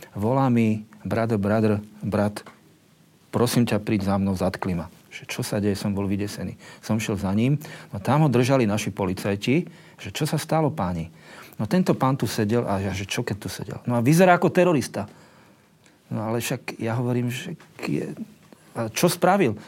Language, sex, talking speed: Slovak, male, 180 wpm